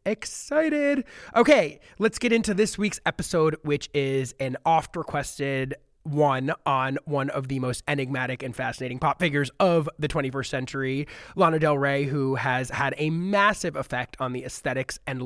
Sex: male